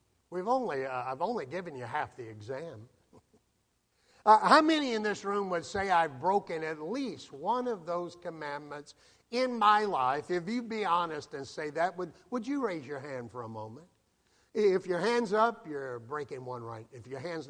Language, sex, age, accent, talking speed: English, male, 50-69, American, 190 wpm